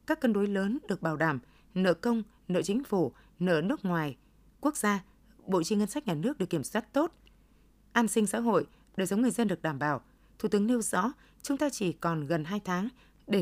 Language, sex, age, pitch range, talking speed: Vietnamese, female, 20-39, 170-225 Hz, 225 wpm